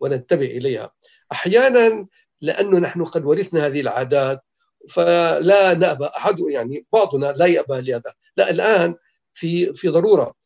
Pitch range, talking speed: 150-225 Hz, 125 wpm